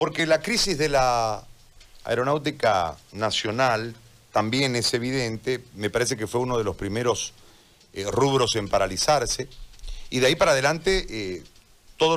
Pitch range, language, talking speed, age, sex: 105-135 Hz, Spanish, 145 wpm, 40-59, male